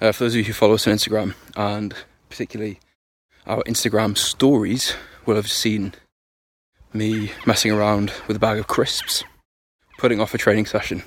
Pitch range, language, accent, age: 105-115 Hz, English, British, 20-39